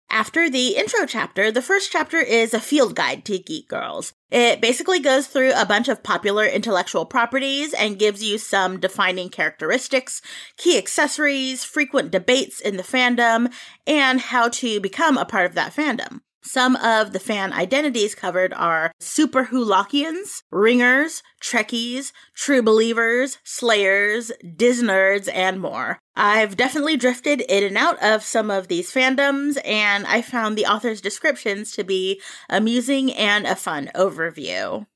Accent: American